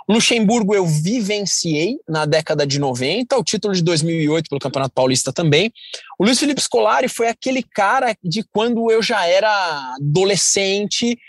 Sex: male